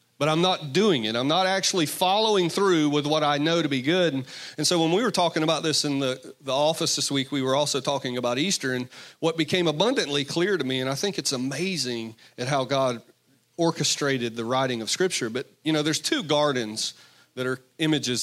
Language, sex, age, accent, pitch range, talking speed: English, male, 40-59, American, 135-170 Hz, 220 wpm